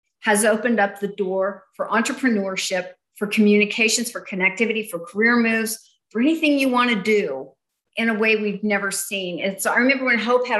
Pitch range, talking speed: 185-230 Hz, 185 wpm